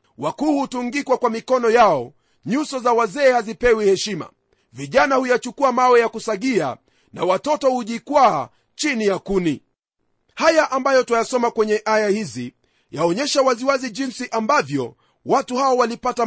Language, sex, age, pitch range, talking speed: Swahili, male, 40-59, 205-265 Hz, 120 wpm